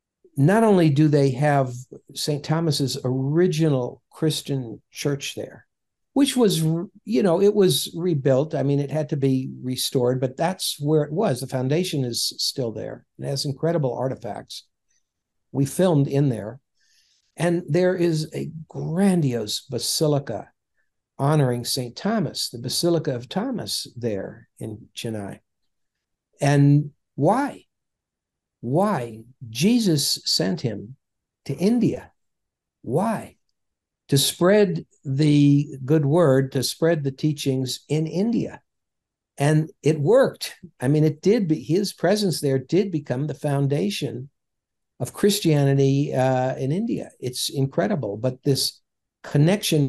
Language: English